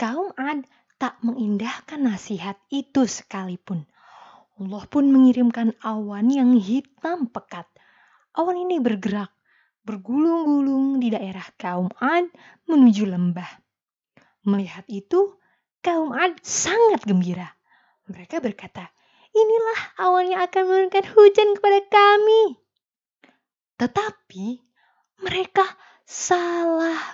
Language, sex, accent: Indonesian, female, native